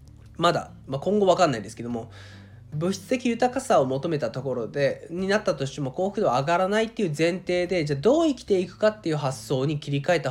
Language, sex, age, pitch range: Japanese, male, 20-39, 135-225 Hz